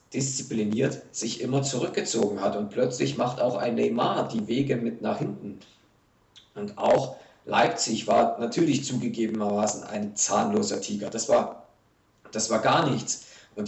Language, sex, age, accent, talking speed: German, male, 50-69, German, 135 wpm